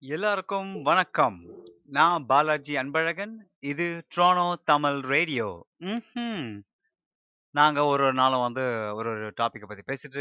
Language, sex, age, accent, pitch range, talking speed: Tamil, male, 30-49, native, 115-145 Hz, 105 wpm